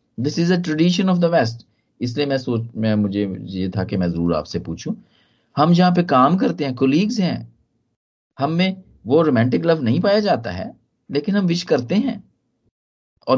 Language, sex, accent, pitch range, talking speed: Hindi, male, native, 95-155 Hz, 110 wpm